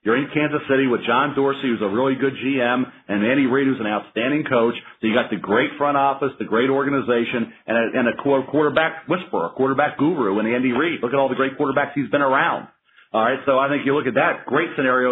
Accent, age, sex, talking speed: American, 40-59, male, 240 wpm